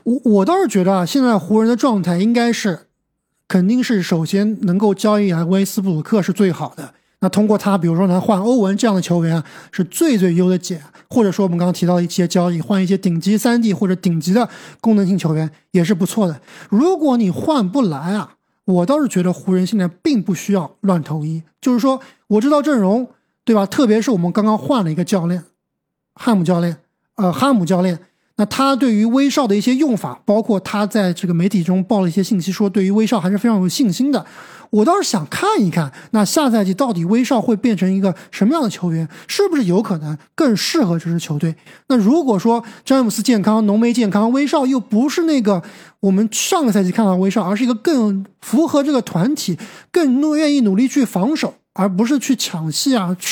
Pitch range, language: 185-240 Hz, Chinese